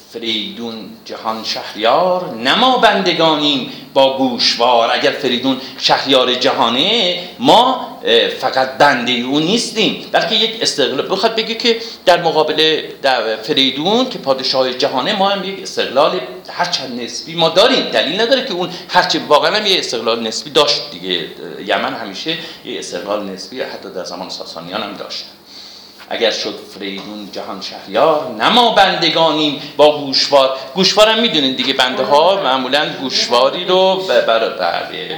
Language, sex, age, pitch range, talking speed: Persian, male, 50-69, 120-190 Hz, 135 wpm